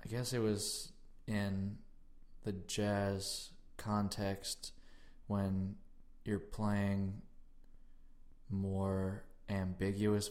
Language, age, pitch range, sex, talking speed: English, 20-39, 95-100 Hz, male, 75 wpm